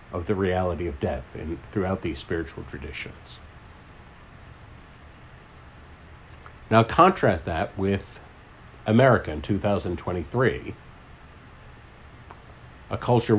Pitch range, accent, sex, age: 85-105 Hz, American, male, 60-79